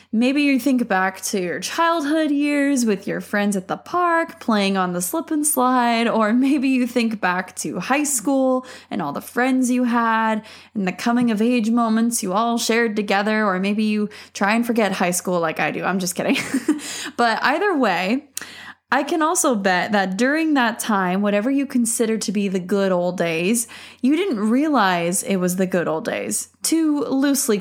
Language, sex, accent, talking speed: English, female, American, 195 wpm